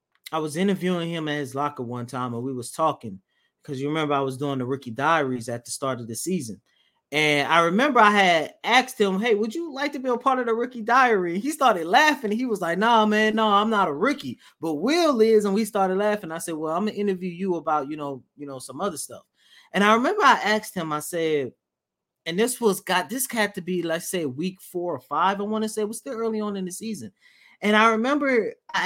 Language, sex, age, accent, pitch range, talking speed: English, male, 30-49, American, 140-215 Hz, 255 wpm